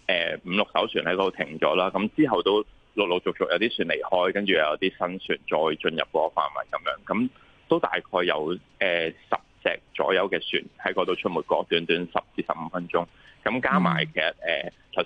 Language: Chinese